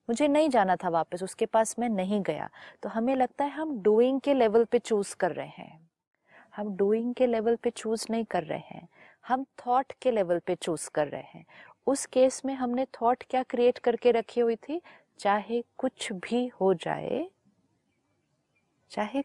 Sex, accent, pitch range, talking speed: female, native, 180-240 Hz, 185 wpm